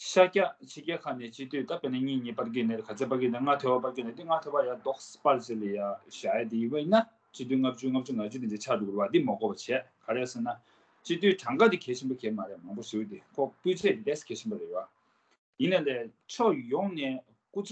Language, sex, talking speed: English, male, 50 wpm